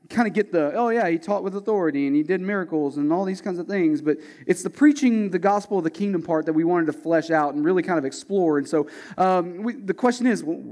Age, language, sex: 30-49, English, male